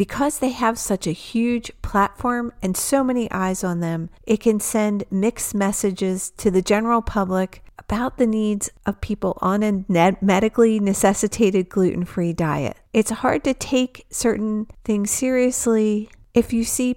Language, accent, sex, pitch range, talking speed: English, American, female, 185-235 Hz, 150 wpm